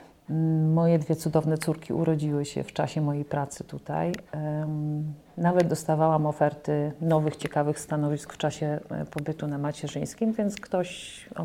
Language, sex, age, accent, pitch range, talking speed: Polish, female, 40-59, native, 150-185 Hz, 130 wpm